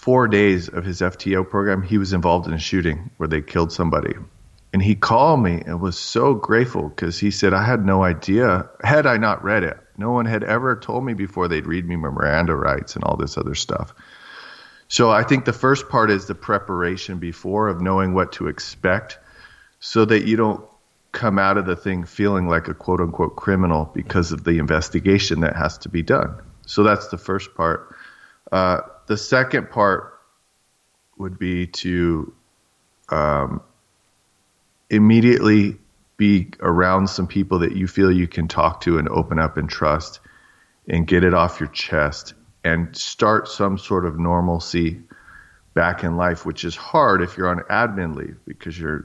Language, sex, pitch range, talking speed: English, male, 85-100 Hz, 180 wpm